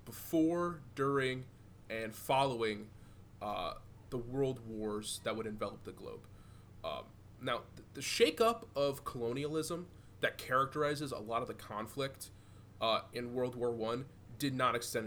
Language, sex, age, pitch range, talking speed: English, male, 20-39, 105-130 Hz, 140 wpm